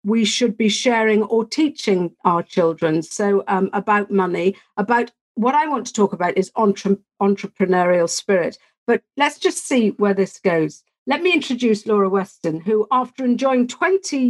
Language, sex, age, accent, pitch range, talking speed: English, female, 50-69, British, 195-235 Hz, 155 wpm